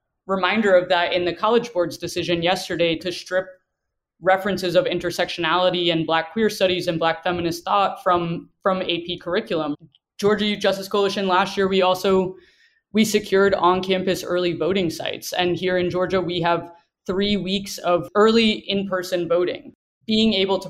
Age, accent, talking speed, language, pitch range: 20-39, American, 160 wpm, English, 175-195 Hz